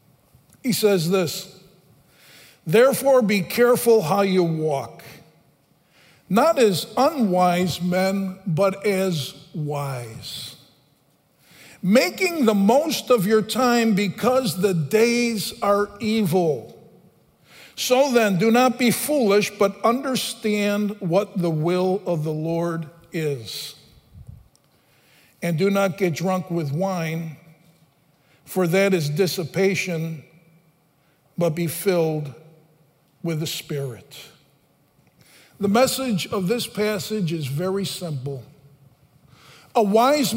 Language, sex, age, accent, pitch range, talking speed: English, male, 50-69, American, 165-235 Hz, 105 wpm